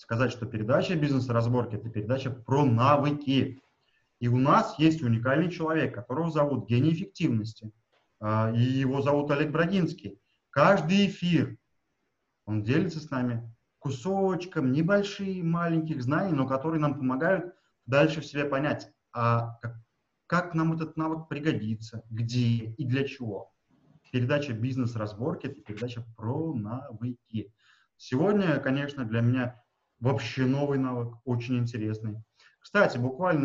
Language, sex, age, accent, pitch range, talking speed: Russian, male, 30-49, native, 120-155 Hz, 120 wpm